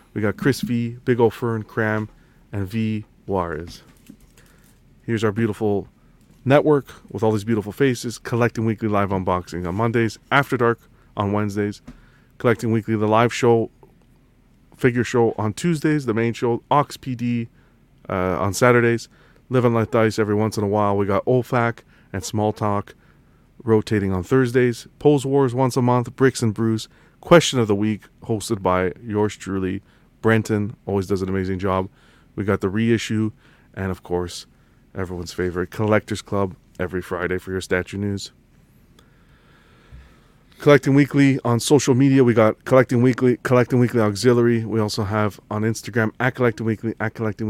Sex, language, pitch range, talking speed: male, English, 100-120 Hz, 160 wpm